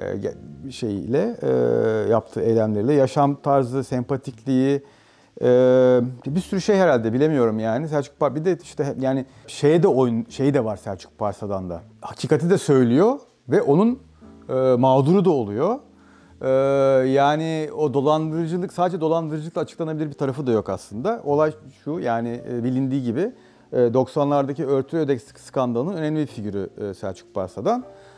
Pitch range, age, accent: 115-160 Hz, 40-59, native